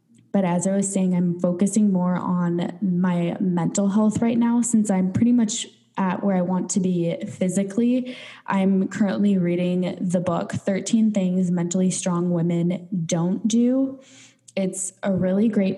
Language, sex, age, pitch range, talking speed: English, female, 10-29, 175-205 Hz, 155 wpm